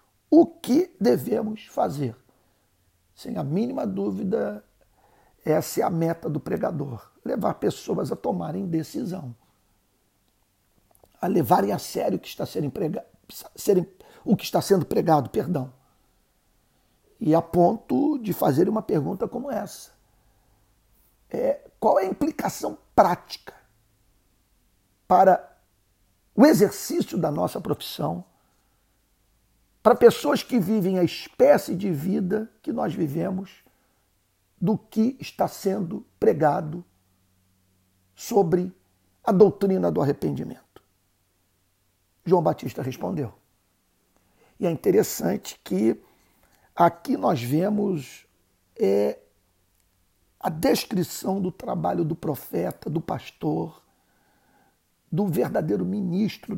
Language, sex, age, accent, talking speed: Portuguese, male, 60-79, Brazilian, 100 wpm